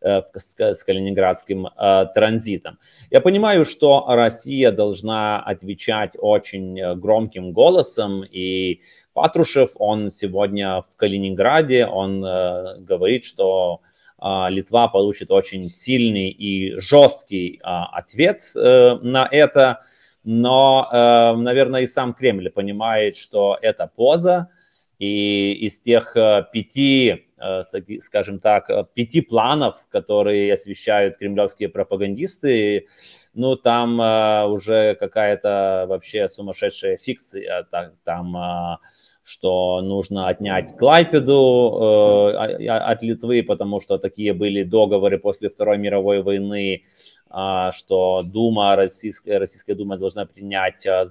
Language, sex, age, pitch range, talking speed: Ukrainian, male, 30-49, 95-120 Hz, 95 wpm